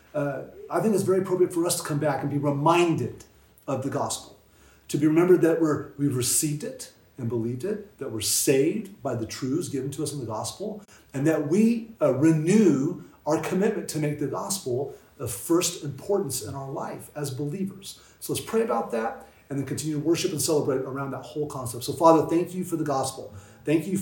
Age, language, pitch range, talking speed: 30-49, English, 135-175 Hz, 205 wpm